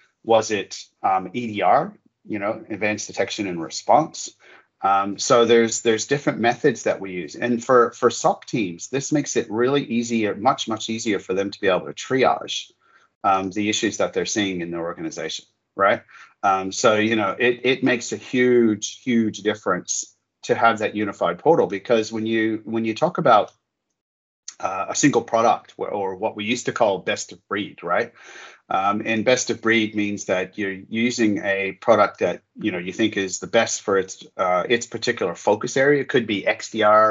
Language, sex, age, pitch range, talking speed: English, male, 30-49, 100-120 Hz, 190 wpm